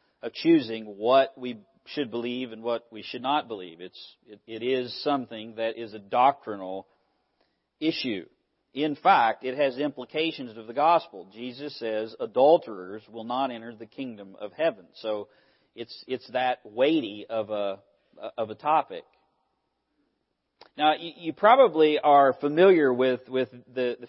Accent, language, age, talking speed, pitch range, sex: American, English, 40-59, 145 wpm, 115-145 Hz, male